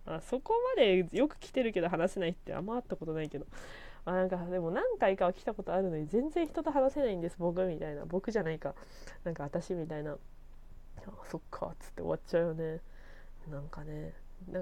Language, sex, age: Japanese, female, 20-39